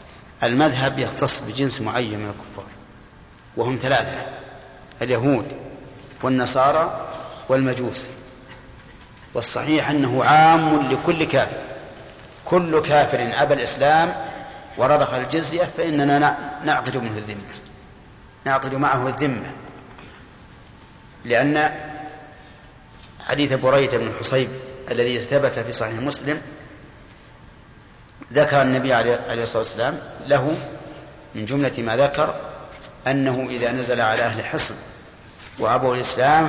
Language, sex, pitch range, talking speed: Arabic, male, 125-150 Hz, 95 wpm